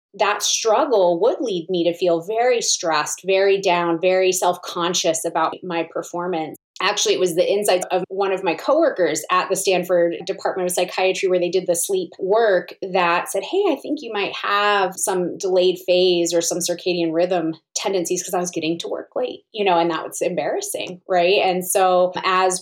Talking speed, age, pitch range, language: 190 wpm, 30-49, 175-215 Hz, English